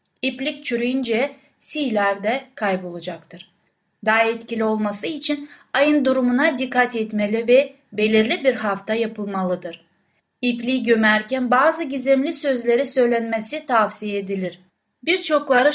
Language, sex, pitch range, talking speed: Turkish, female, 215-270 Hz, 105 wpm